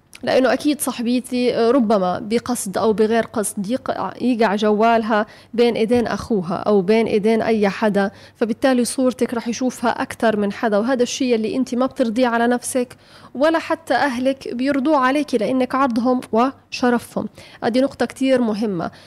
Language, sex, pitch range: Arabic, female, 215-255 Hz